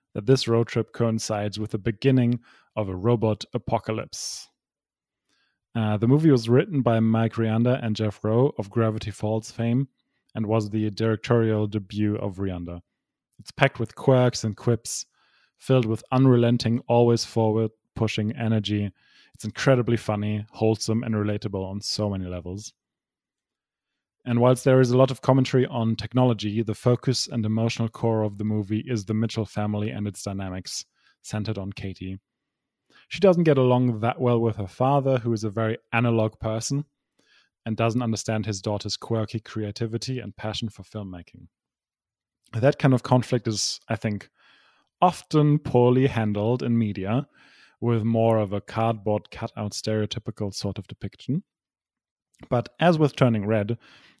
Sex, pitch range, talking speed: male, 105-125 Hz, 150 wpm